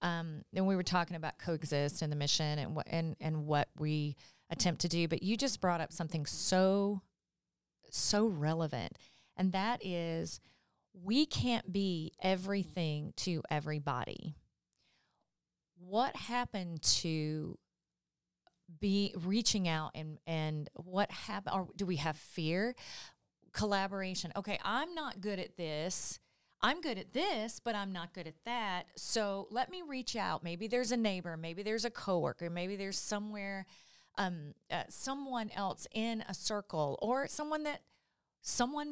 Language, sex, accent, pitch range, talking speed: English, female, American, 170-230 Hz, 145 wpm